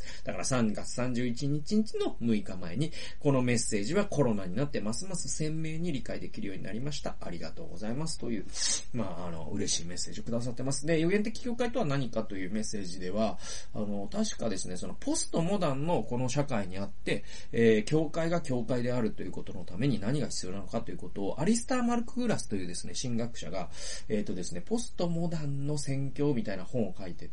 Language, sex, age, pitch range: Japanese, male, 30-49, 105-170 Hz